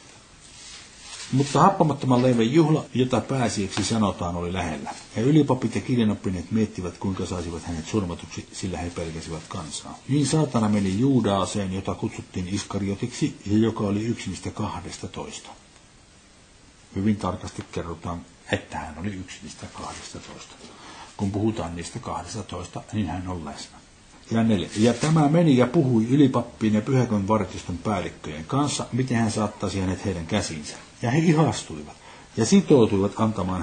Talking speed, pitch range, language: 140 wpm, 95-125 Hz, Finnish